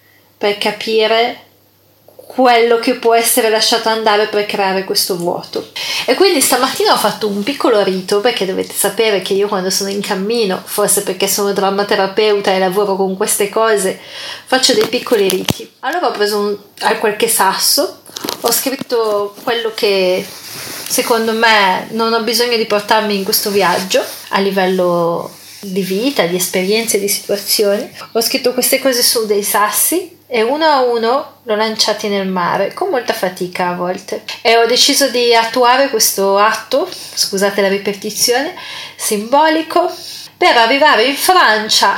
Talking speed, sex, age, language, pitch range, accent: 150 wpm, female, 30-49, Italian, 200-245 Hz, native